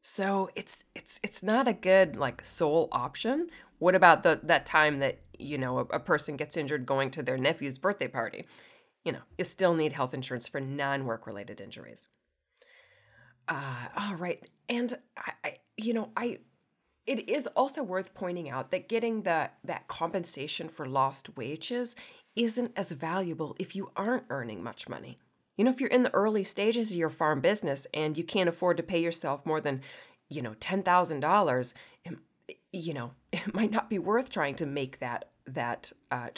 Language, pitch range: English, 135-190 Hz